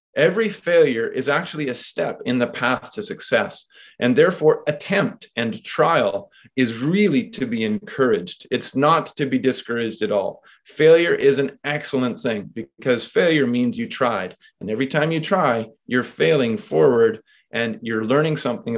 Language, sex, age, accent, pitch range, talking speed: English, male, 30-49, American, 125-155 Hz, 160 wpm